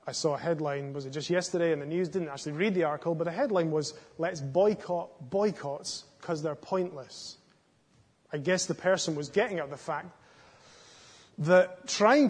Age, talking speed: 30-49, 180 wpm